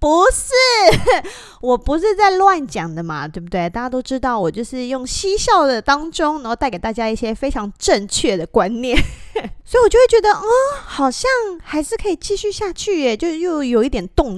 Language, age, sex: Chinese, 20-39, female